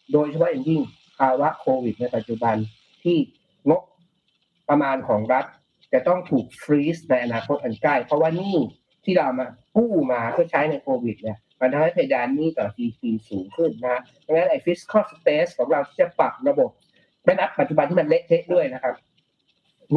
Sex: male